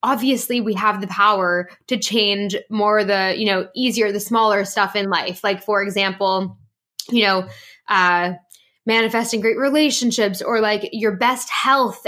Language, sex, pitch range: English, female, 195-240 Hz